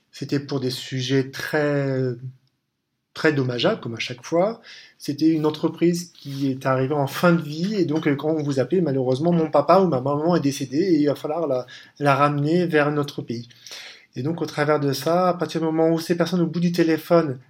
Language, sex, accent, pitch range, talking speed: French, male, French, 140-170 Hz, 215 wpm